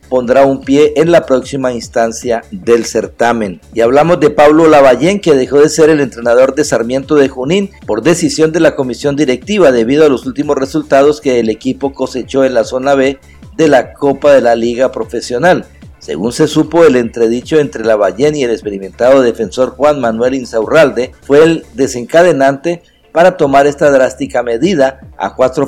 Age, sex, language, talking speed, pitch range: 50-69, male, Spanish, 175 wpm, 125-155 Hz